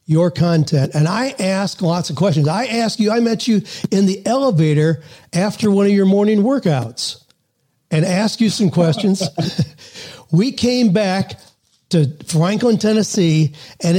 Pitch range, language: 155-205 Hz, English